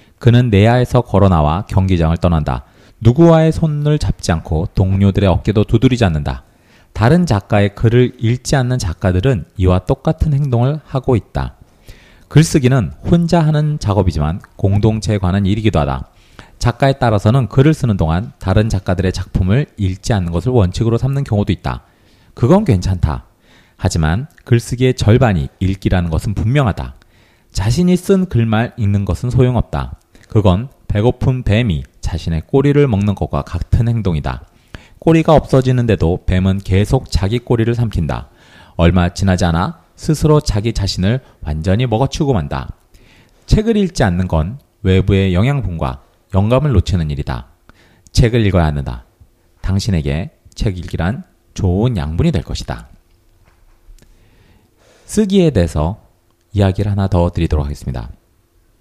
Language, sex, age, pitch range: Korean, male, 40-59, 85-120 Hz